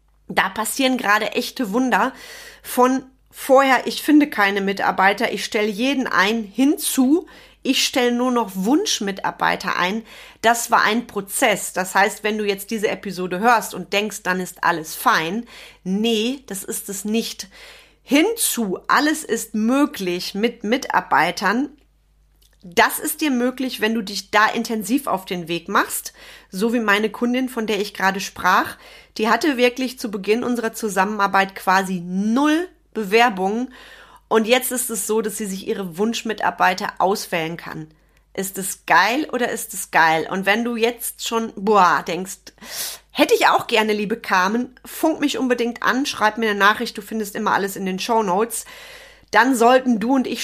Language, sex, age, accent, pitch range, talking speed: German, female, 30-49, German, 200-250 Hz, 160 wpm